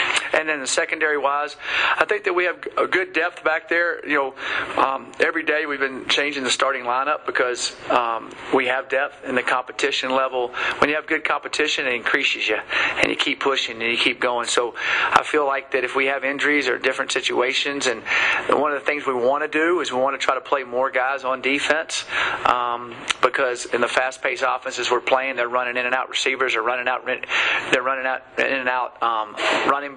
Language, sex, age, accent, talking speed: English, male, 40-59, American, 215 wpm